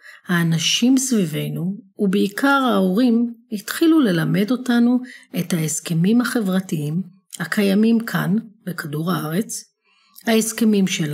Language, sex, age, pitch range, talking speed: Hebrew, female, 40-59, 165-215 Hz, 85 wpm